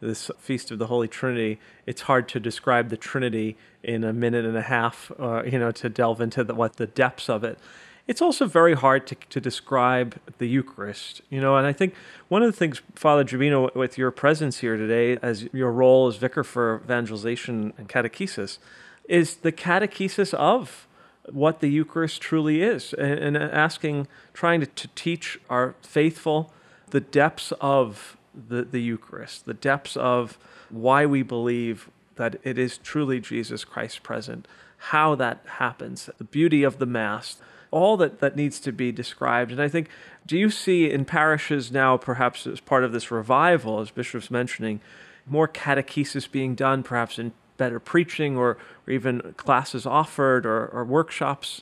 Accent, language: American, English